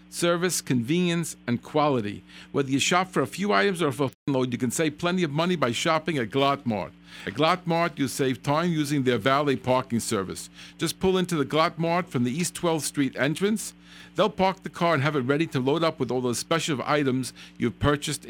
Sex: male